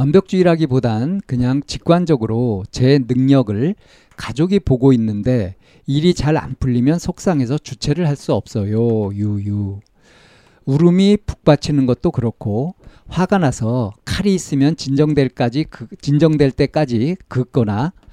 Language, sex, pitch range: Korean, male, 120-165 Hz